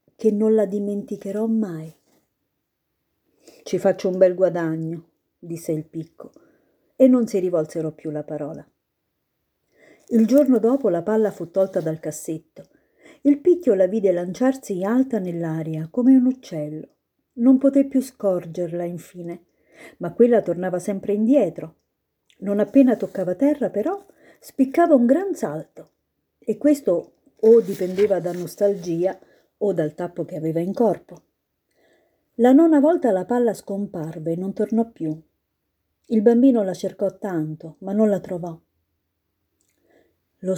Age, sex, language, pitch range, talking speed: 50-69, female, Italian, 170-235 Hz, 140 wpm